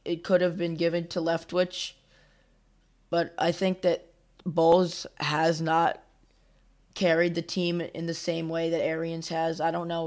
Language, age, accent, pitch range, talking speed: English, 20-39, American, 160-175 Hz, 160 wpm